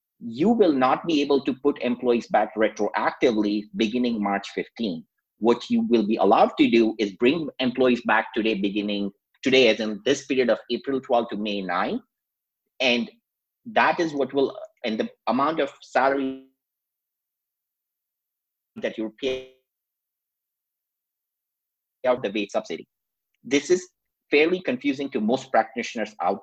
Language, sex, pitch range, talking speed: English, male, 105-140 Hz, 140 wpm